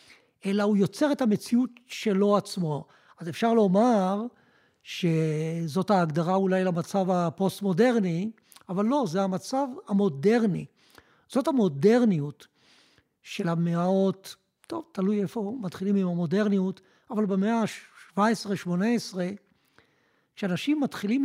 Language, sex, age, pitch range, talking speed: Hebrew, male, 60-79, 185-230 Hz, 100 wpm